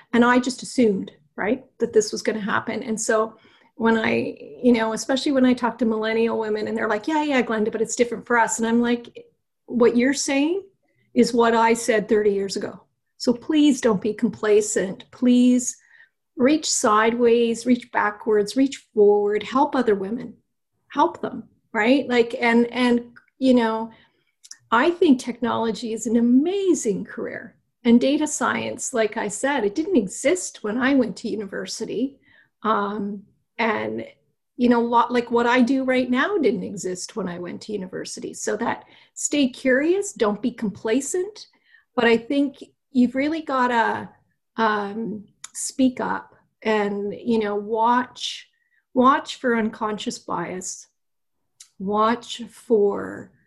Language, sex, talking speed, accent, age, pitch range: English, female, 155 wpm, American, 40-59, 220-260 Hz